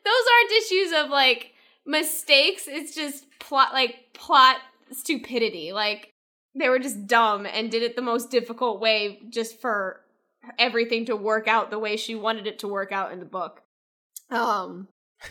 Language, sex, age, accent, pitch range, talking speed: English, female, 10-29, American, 205-260 Hz, 165 wpm